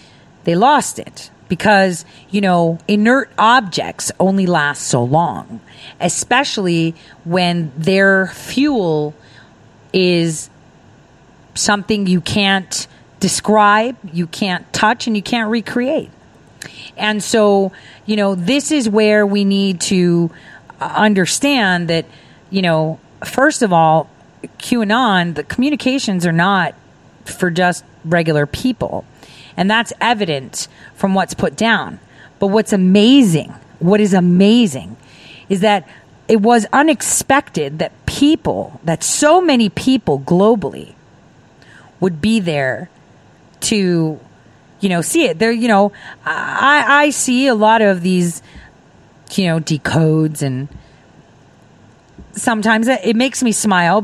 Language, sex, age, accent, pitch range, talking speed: English, female, 40-59, American, 165-220 Hz, 120 wpm